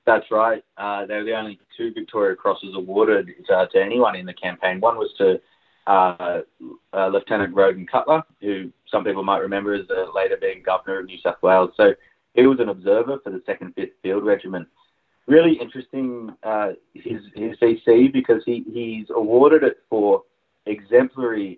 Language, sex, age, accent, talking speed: English, male, 30-49, Australian, 175 wpm